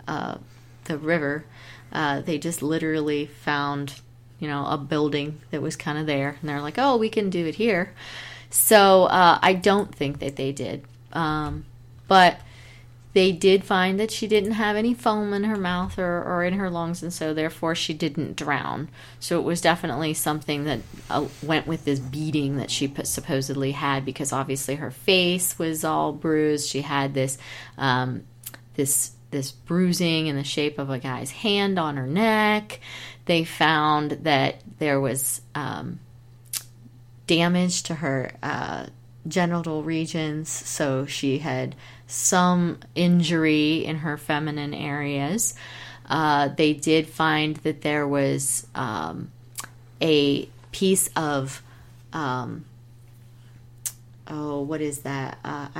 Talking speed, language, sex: 145 wpm, English, female